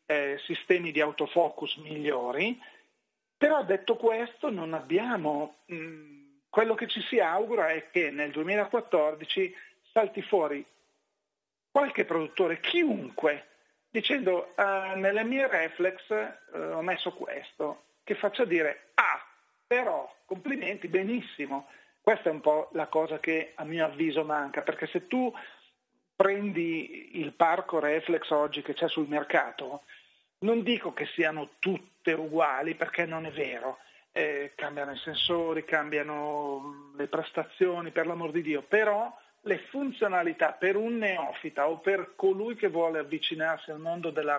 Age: 40-59